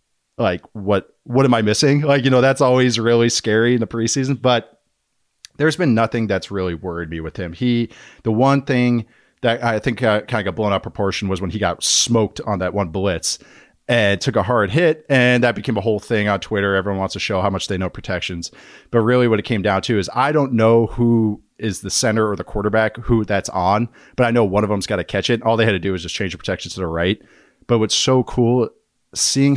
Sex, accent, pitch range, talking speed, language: male, American, 100-130 Hz, 250 wpm, English